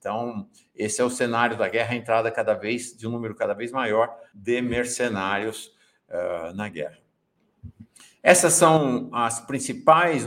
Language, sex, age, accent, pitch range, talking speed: Portuguese, male, 60-79, Brazilian, 95-125 Hz, 150 wpm